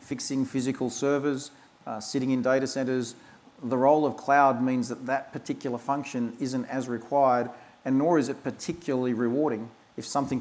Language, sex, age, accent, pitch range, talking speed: English, male, 40-59, Australian, 120-140 Hz, 160 wpm